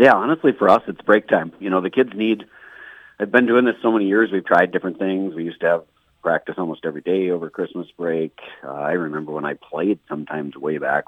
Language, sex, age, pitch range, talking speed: English, male, 40-59, 75-90 Hz, 235 wpm